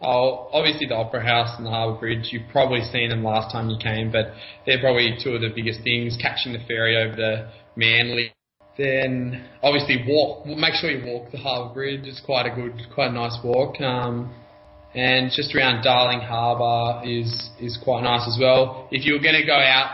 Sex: male